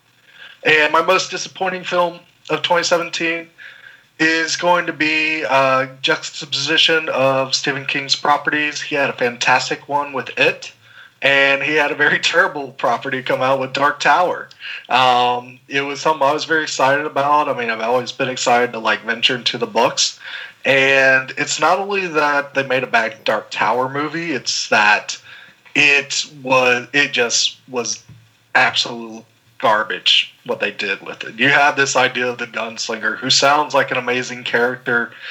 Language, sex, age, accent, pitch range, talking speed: English, male, 30-49, American, 130-150 Hz, 165 wpm